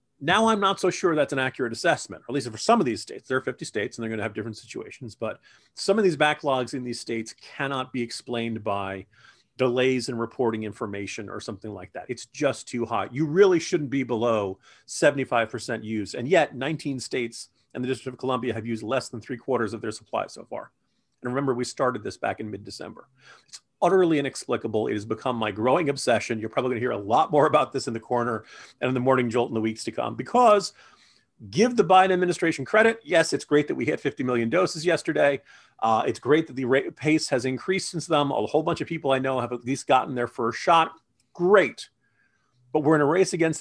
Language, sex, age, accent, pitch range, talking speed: English, male, 40-59, American, 115-155 Hz, 225 wpm